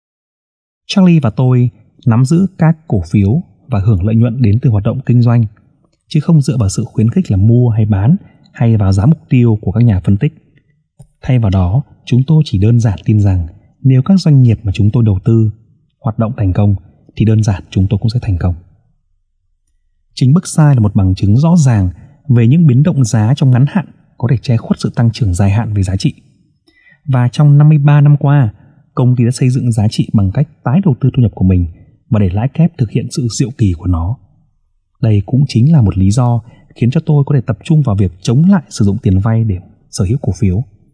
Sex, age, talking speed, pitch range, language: male, 20-39, 235 wpm, 105-145 Hz, Vietnamese